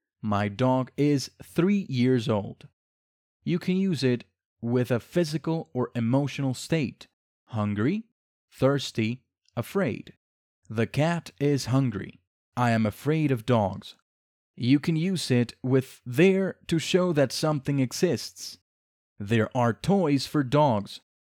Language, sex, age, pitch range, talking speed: English, male, 30-49, 110-145 Hz, 125 wpm